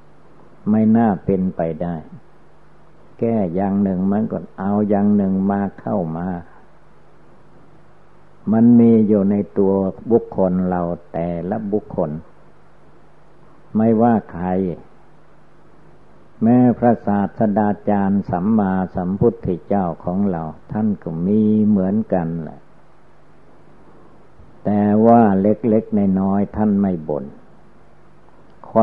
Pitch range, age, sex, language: 90-110 Hz, 60-79, male, Thai